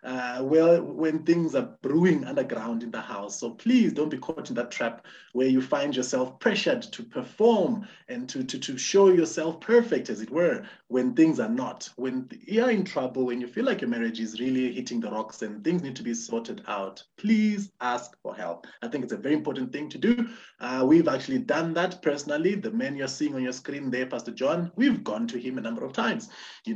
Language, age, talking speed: English, 30-49, 220 wpm